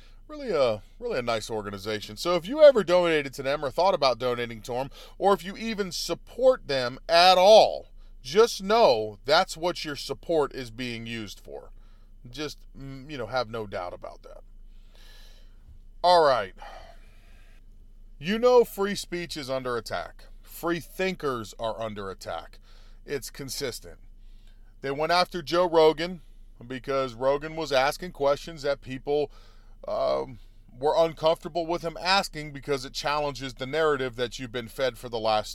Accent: American